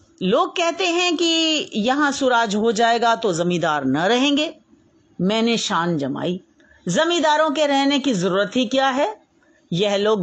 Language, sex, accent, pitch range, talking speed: Hindi, female, native, 210-315 Hz, 145 wpm